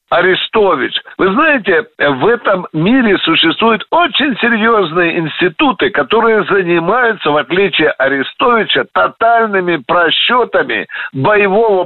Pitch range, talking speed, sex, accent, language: 175-220 Hz, 90 wpm, male, native, Russian